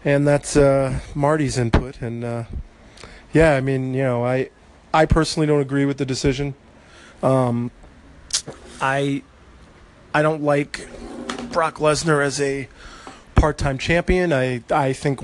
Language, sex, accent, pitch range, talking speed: English, male, American, 120-140 Hz, 135 wpm